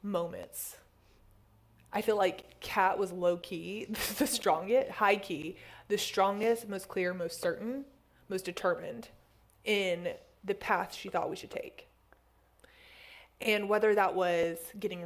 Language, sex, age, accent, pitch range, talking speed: English, female, 20-39, American, 185-225 Hz, 130 wpm